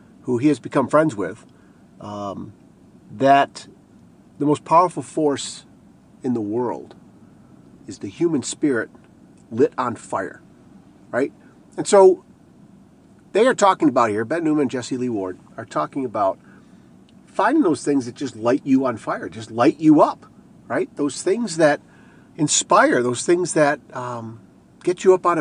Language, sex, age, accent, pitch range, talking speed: English, male, 40-59, American, 125-180 Hz, 155 wpm